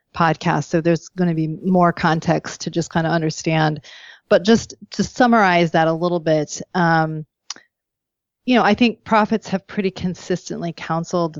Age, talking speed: 30-49, 165 wpm